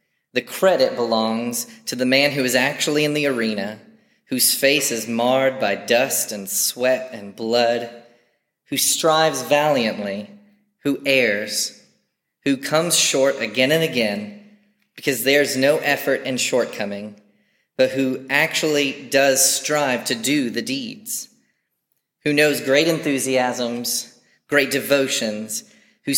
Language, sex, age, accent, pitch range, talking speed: English, male, 30-49, American, 120-160 Hz, 125 wpm